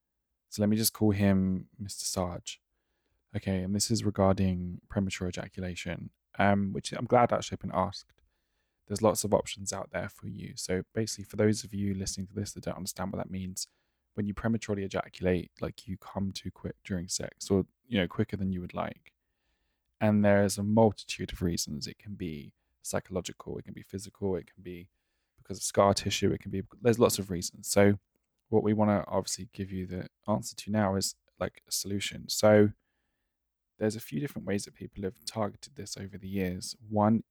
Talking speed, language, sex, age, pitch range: 200 wpm, English, male, 20-39, 95-105 Hz